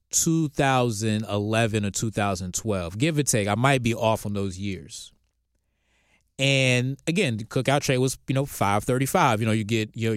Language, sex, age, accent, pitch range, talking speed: English, male, 20-39, American, 105-150 Hz, 160 wpm